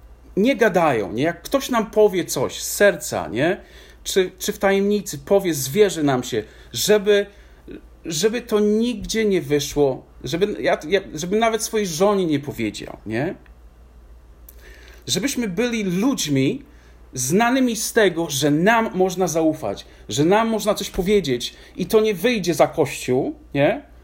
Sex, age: male, 40-59